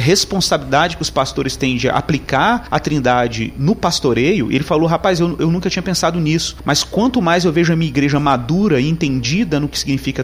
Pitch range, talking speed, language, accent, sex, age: 135-175 Hz, 200 wpm, Portuguese, Brazilian, male, 30-49